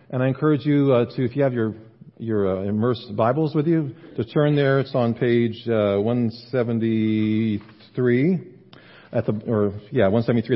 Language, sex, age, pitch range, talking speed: English, male, 40-59, 115-155 Hz, 165 wpm